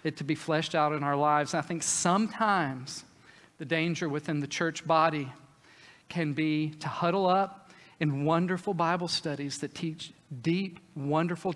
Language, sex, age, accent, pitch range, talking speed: English, male, 50-69, American, 150-180 Hz, 155 wpm